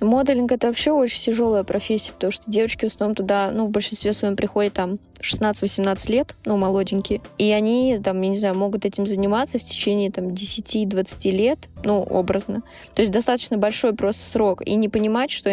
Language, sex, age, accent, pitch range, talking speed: Russian, female, 20-39, native, 195-225 Hz, 185 wpm